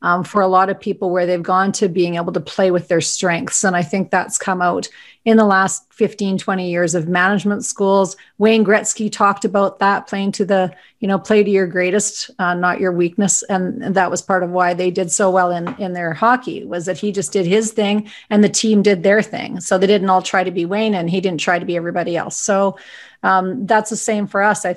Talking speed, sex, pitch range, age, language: 245 wpm, female, 185-215 Hz, 40-59, English